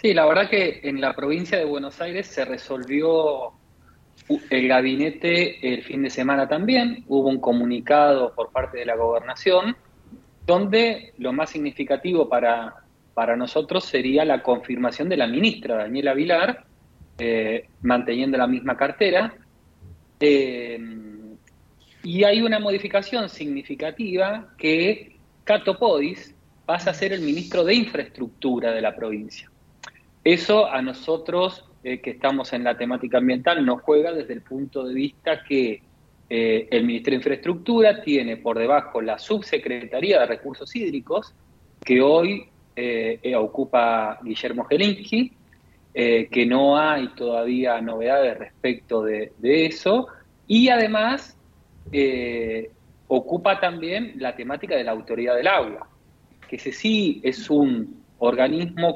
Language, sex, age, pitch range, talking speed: Spanish, male, 30-49, 120-180 Hz, 130 wpm